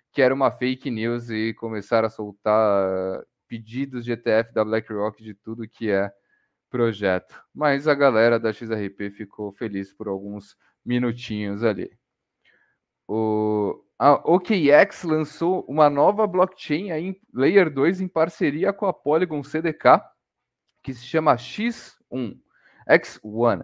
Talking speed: 130 wpm